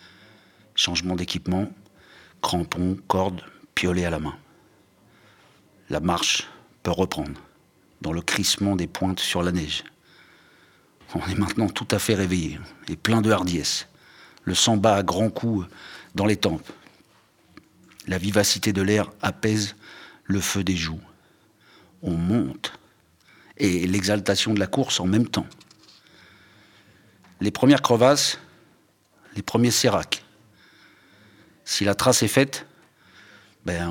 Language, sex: French, male